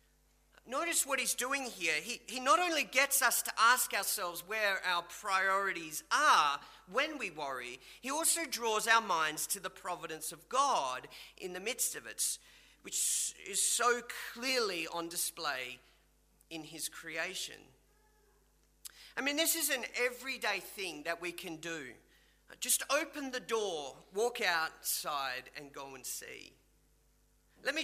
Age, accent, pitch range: 40-59, Australian, 165-250 Hz